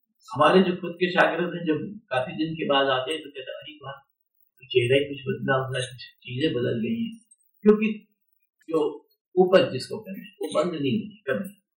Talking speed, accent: 90 wpm, native